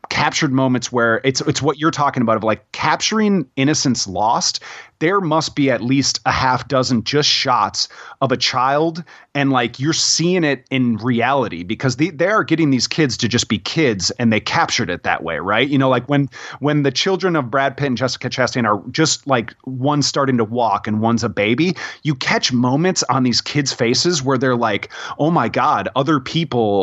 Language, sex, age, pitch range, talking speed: English, male, 30-49, 120-145 Hz, 205 wpm